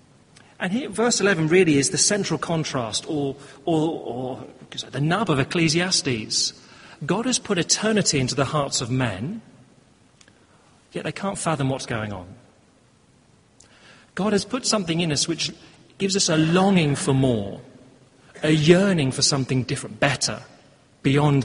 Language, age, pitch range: English, 40-59, 130-175 Hz